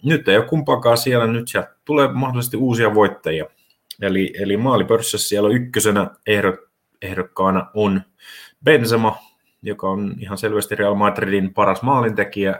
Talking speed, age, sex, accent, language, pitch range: 130 wpm, 30-49, male, native, Finnish, 95-115 Hz